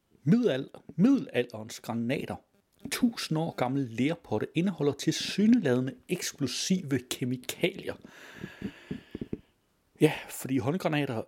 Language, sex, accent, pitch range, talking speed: Danish, male, native, 110-150 Hz, 75 wpm